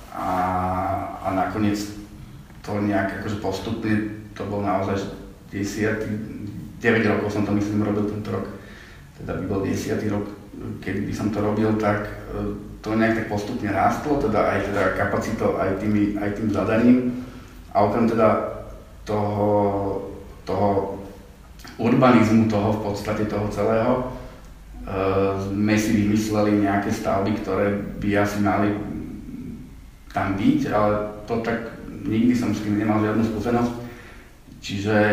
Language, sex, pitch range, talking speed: Slovak, male, 100-110 Hz, 130 wpm